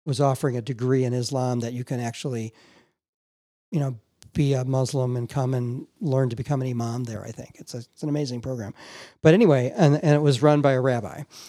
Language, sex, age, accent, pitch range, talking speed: English, male, 40-59, American, 125-145 Hz, 220 wpm